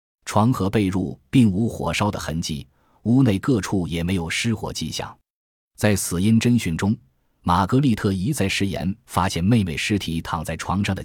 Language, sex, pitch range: Chinese, male, 85-115 Hz